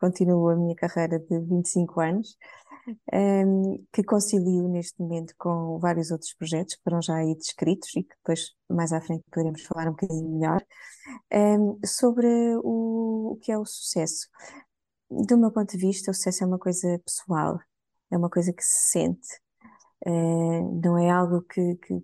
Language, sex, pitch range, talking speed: Portuguese, female, 175-220 Hz, 165 wpm